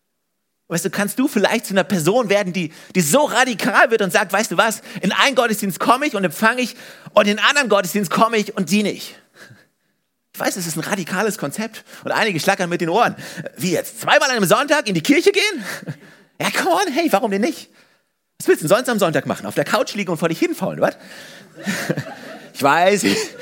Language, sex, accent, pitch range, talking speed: German, male, German, 160-215 Hz, 220 wpm